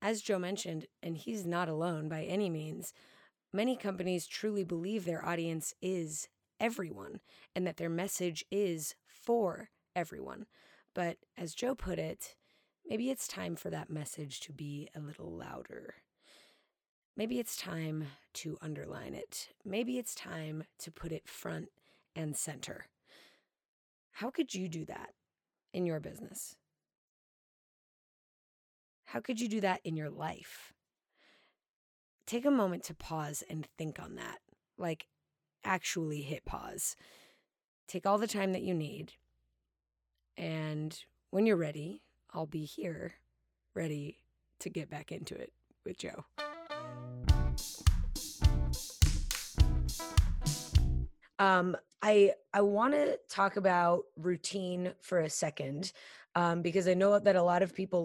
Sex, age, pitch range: female, 30-49, 155-195 Hz